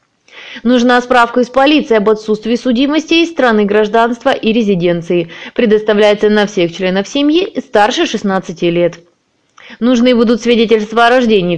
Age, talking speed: 20-39, 130 wpm